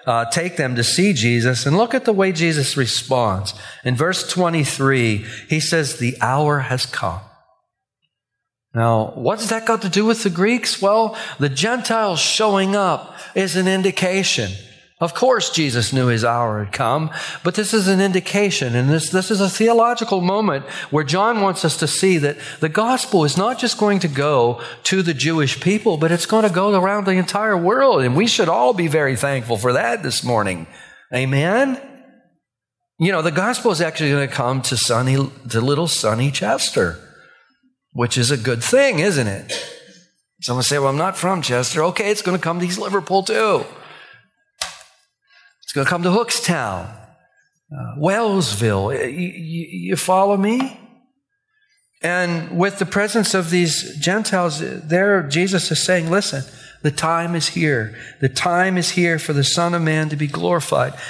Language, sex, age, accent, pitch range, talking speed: English, male, 40-59, American, 135-200 Hz, 170 wpm